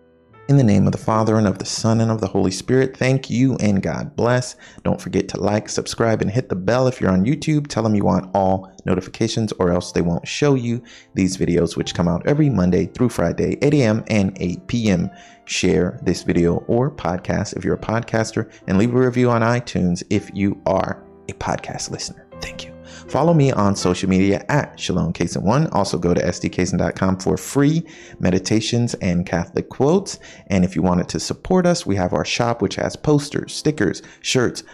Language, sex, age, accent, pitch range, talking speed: English, male, 30-49, American, 90-125 Hz, 200 wpm